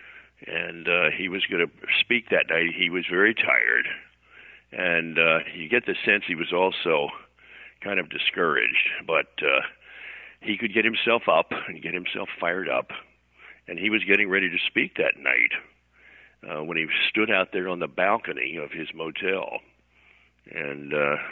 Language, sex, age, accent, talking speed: English, male, 50-69, American, 165 wpm